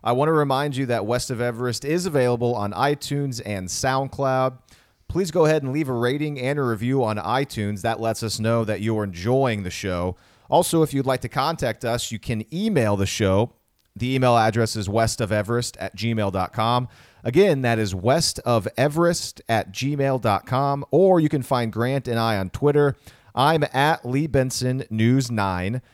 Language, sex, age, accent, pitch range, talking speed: English, male, 30-49, American, 105-135 Hz, 175 wpm